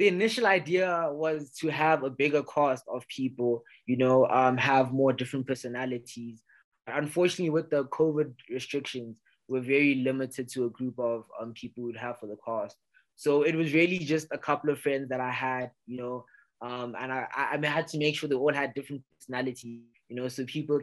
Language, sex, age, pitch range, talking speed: English, male, 20-39, 125-155 Hz, 200 wpm